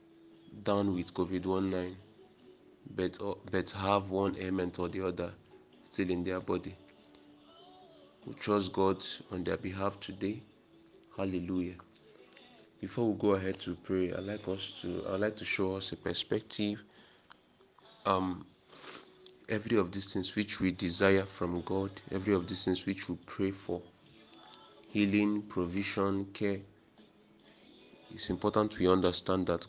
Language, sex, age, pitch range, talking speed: English, male, 20-39, 90-100 Hz, 135 wpm